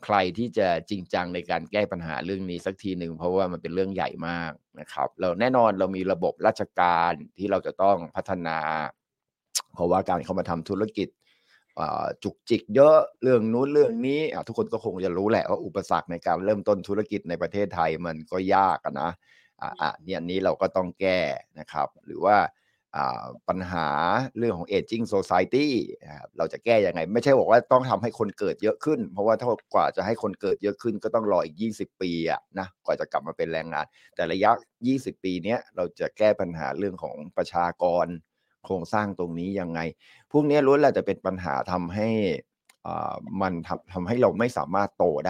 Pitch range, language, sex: 85-110 Hz, Thai, male